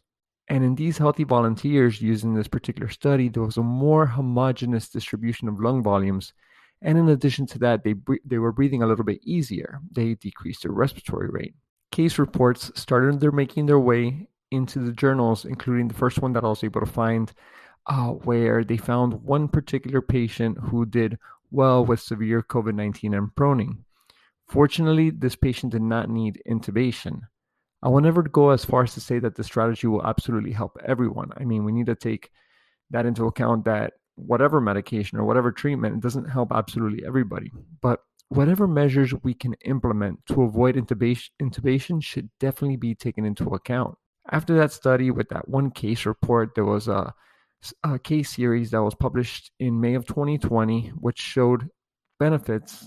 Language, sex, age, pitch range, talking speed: English, male, 30-49, 115-135 Hz, 175 wpm